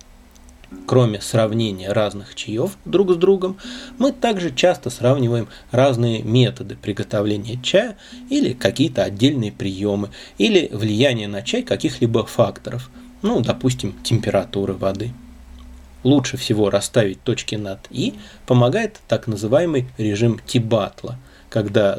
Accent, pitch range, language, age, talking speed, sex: native, 105-140 Hz, Russian, 20-39, 110 wpm, male